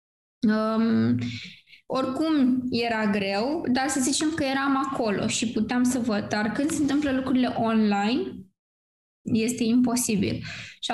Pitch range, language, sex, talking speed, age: 225-270 Hz, Romanian, female, 120 wpm, 20-39